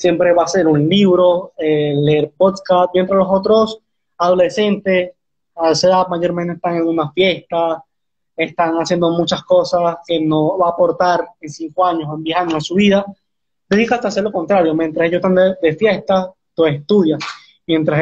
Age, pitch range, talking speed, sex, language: 20-39, 165-195 Hz, 180 wpm, male, Spanish